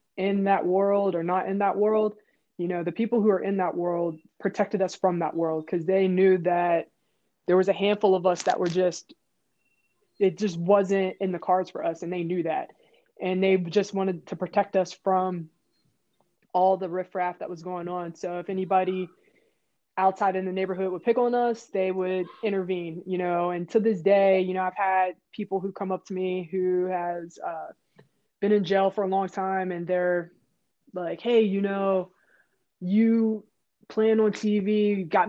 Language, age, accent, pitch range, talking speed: English, 20-39, American, 180-200 Hz, 190 wpm